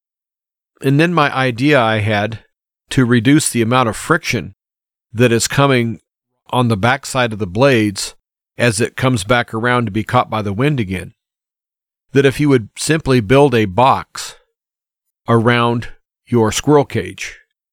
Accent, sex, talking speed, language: American, male, 150 wpm, English